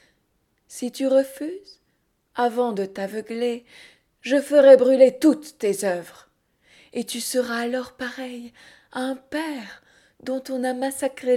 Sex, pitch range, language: female, 210-265 Hz, French